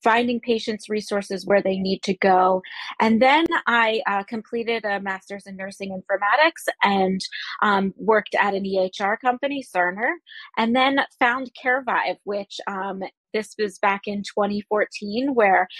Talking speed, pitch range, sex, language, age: 145 wpm, 195-225 Hz, female, English, 20-39